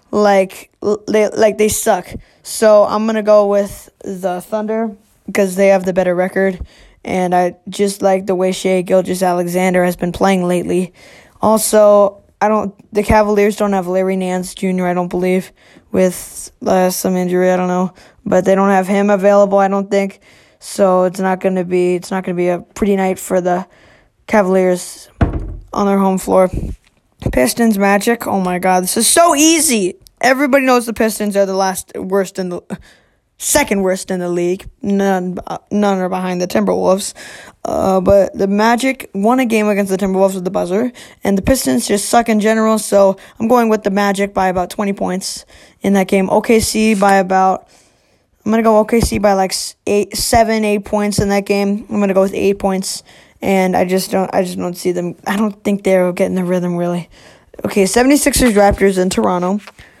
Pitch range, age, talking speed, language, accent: 185-210 Hz, 20-39, 185 wpm, English, American